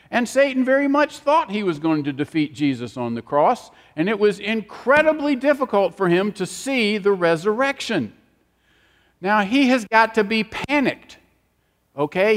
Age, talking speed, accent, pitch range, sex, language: 50-69, 160 wpm, American, 170-225 Hz, male, English